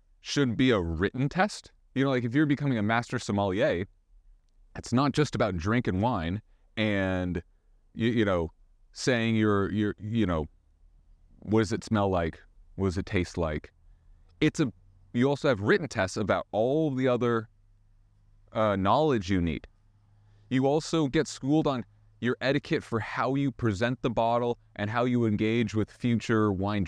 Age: 30-49